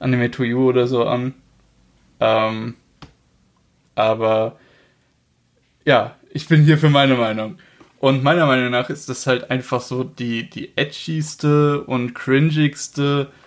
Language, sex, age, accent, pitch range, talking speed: German, male, 20-39, German, 120-140 Hz, 125 wpm